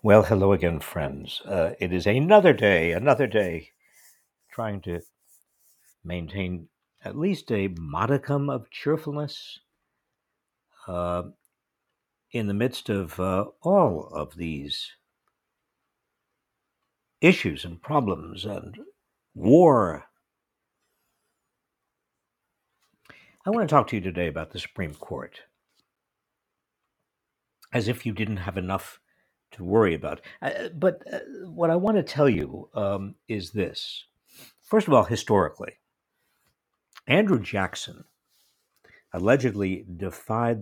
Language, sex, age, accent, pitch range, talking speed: English, male, 60-79, American, 90-130 Hz, 105 wpm